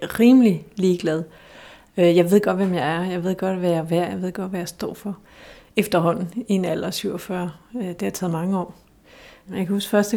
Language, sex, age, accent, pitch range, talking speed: Danish, female, 30-49, native, 185-215 Hz, 220 wpm